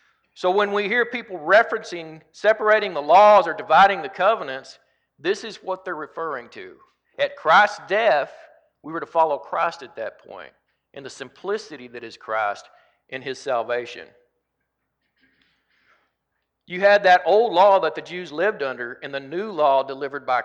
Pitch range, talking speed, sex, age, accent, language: 145-190 Hz, 160 wpm, male, 40-59, American, English